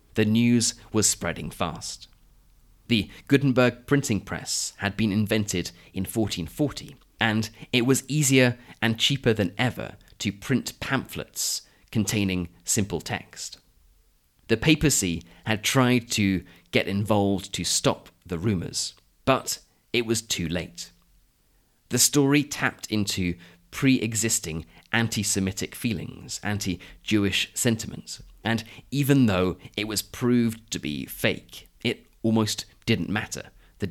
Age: 30-49